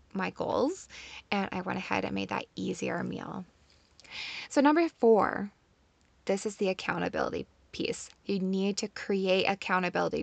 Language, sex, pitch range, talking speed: English, female, 185-230 Hz, 140 wpm